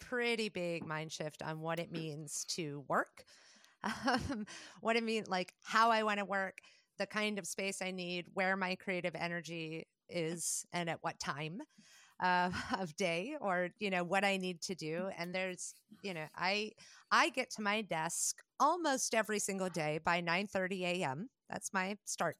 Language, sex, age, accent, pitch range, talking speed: English, female, 30-49, American, 170-210 Hz, 180 wpm